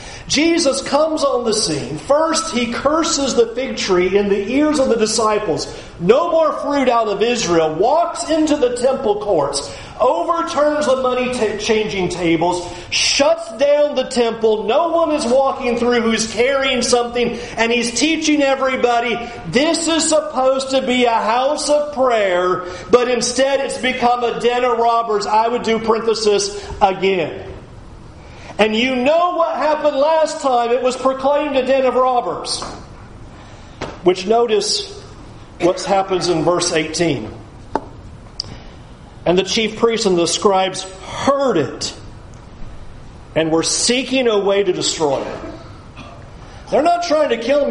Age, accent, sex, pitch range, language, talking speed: 40-59, American, male, 180-270 Hz, English, 145 wpm